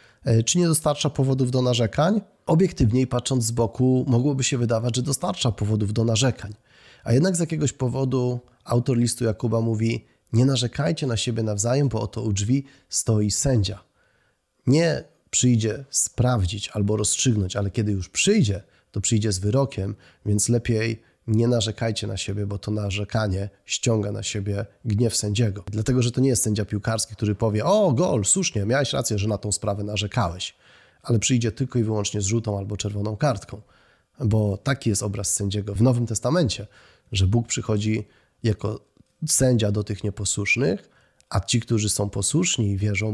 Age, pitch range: 30-49, 105-130 Hz